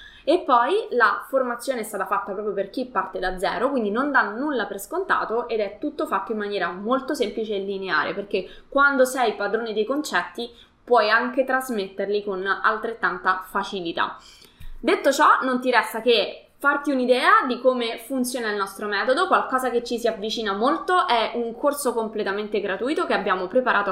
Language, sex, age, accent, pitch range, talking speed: Italian, female, 20-39, native, 200-265 Hz, 175 wpm